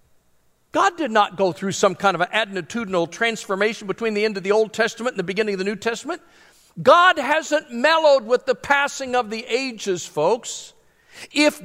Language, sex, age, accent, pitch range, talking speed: English, male, 50-69, American, 180-275 Hz, 185 wpm